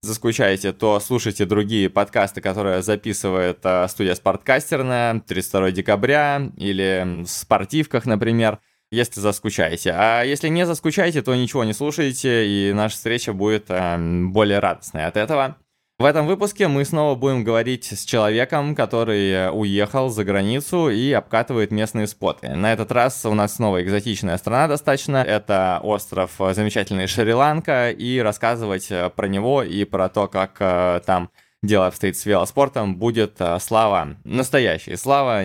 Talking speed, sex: 135 wpm, male